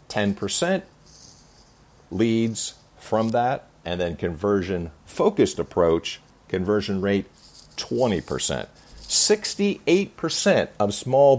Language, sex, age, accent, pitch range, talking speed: English, male, 50-69, American, 95-140 Hz, 70 wpm